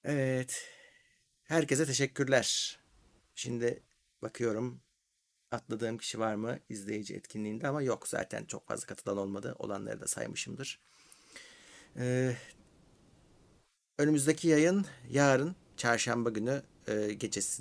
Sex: male